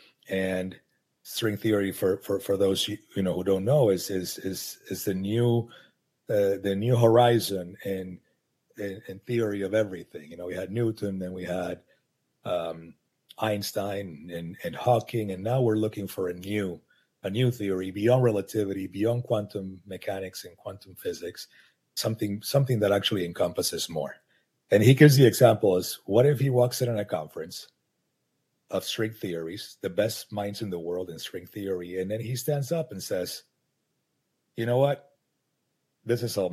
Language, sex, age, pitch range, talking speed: English, male, 40-59, 95-120 Hz, 170 wpm